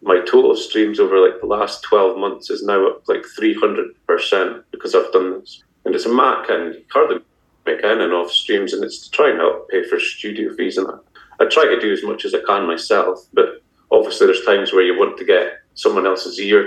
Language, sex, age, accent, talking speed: English, male, 30-49, British, 235 wpm